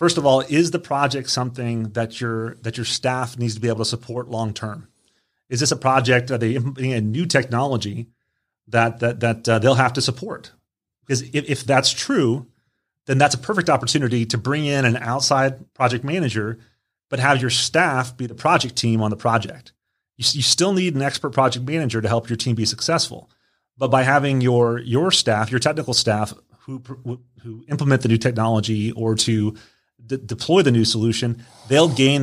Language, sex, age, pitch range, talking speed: English, male, 30-49, 115-135 Hz, 190 wpm